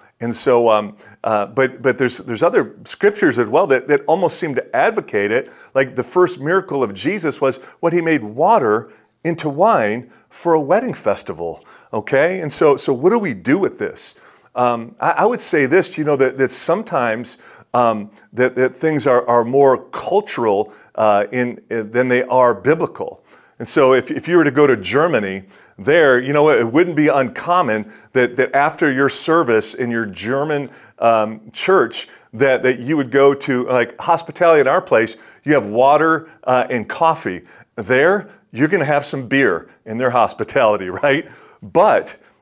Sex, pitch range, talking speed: male, 120-160 Hz, 180 wpm